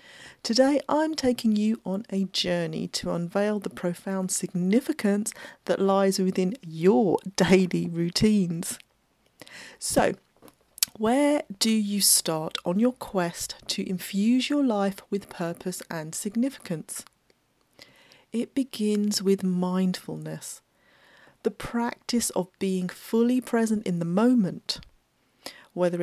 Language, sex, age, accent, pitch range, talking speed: English, female, 40-59, British, 180-230 Hz, 110 wpm